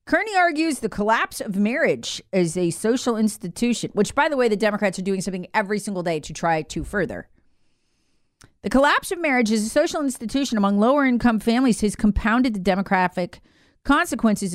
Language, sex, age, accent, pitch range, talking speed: English, female, 40-59, American, 155-225 Hz, 175 wpm